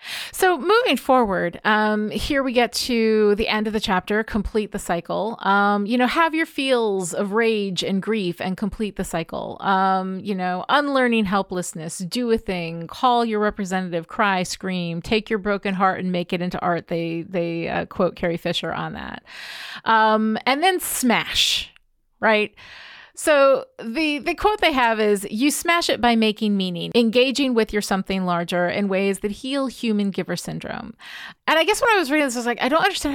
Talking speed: 190 wpm